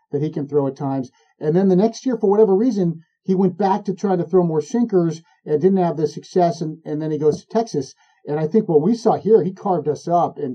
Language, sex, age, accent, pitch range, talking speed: English, male, 50-69, American, 150-190 Hz, 265 wpm